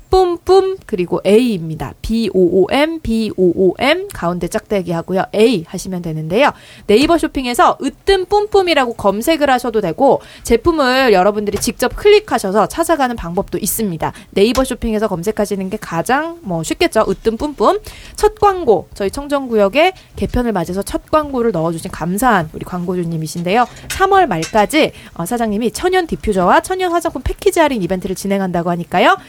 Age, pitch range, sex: 20-39, 180-285 Hz, female